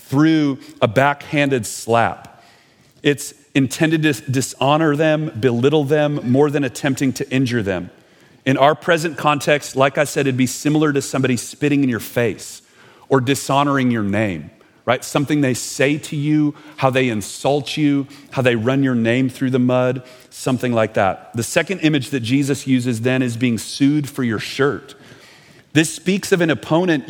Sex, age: male, 40-59